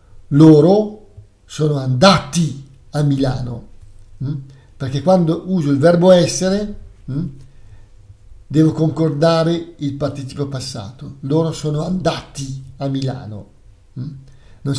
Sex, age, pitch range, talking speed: male, 50-69, 105-165 Hz, 90 wpm